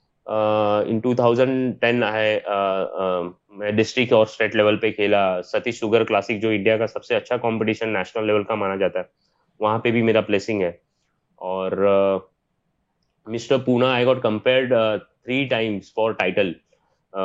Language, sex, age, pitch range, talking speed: Urdu, male, 20-39, 100-120 Hz, 130 wpm